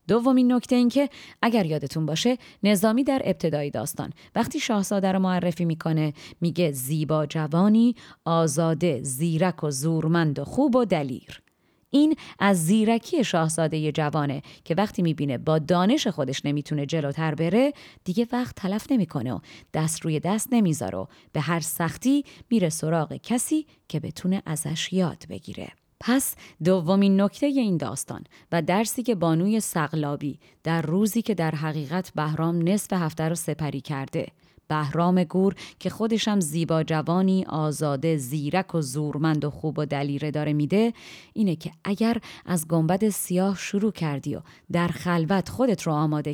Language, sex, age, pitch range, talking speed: Persian, female, 30-49, 155-205 Hz, 145 wpm